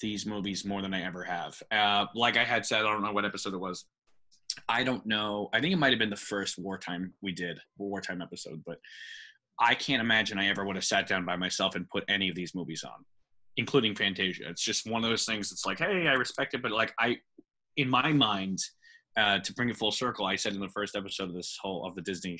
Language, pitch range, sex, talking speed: English, 95-120 Hz, male, 245 wpm